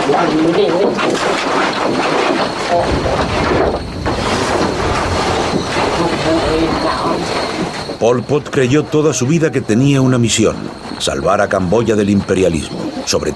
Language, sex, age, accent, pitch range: Spanish, male, 60-79, Spanish, 100-145 Hz